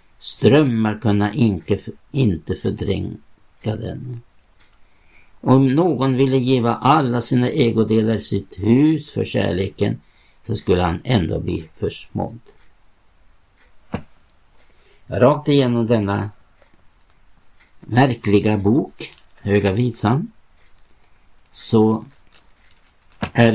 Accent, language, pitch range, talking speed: Norwegian, Swedish, 90-115 Hz, 80 wpm